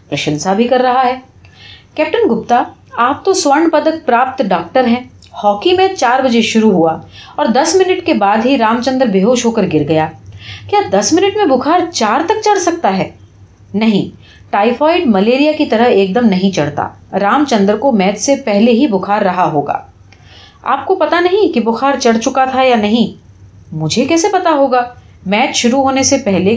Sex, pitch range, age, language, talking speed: female, 180-275 Hz, 30-49, Urdu, 155 wpm